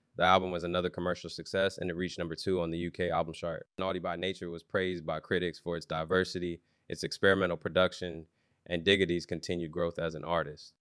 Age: 20-39